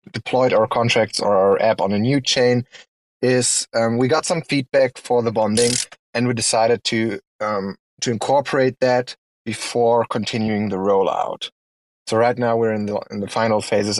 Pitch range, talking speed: 105-125 Hz, 175 wpm